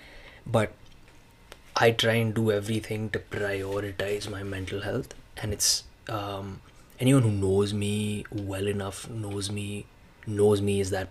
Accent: Indian